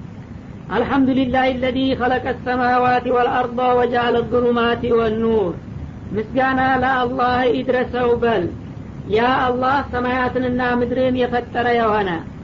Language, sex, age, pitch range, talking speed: Amharic, female, 40-59, 240-255 Hz, 95 wpm